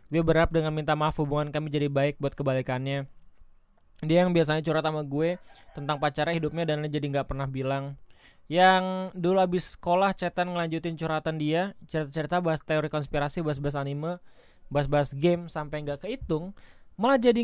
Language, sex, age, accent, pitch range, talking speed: Indonesian, male, 20-39, native, 145-180 Hz, 160 wpm